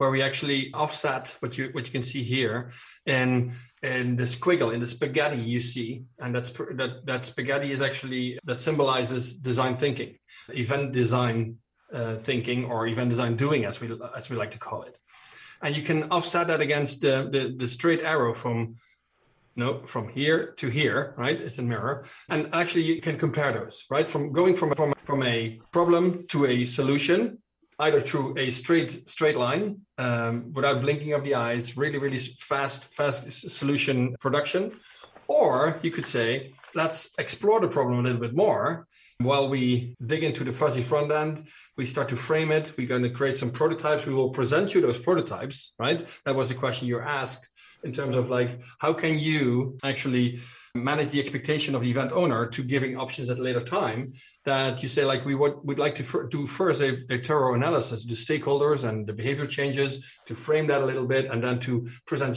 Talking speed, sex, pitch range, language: 195 wpm, male, 125-150 Hz, English